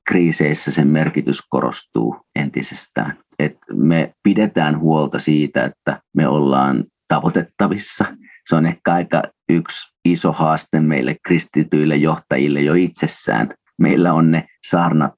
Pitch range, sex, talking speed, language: 70-80 Hz, male, 120 wpm, Finnish